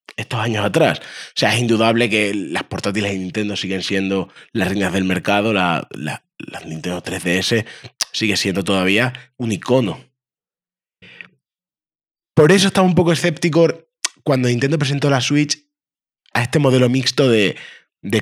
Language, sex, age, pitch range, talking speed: Spanish, male, 20-39, 105-145 Hz, 150 wpm